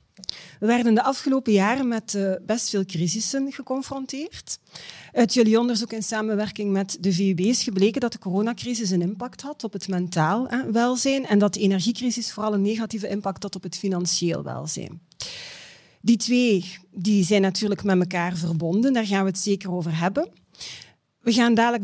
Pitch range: 195-250 Hz